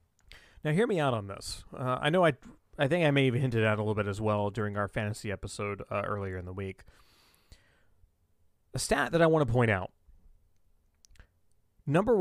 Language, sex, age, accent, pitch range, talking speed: English, male, 30-49, American, 95-130 Hz, 200 wpm